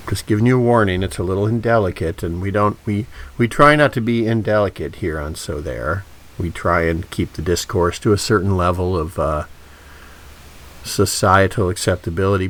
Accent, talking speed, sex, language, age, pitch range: American, 170 wpm, male, English, 50-69, 80-115 Hz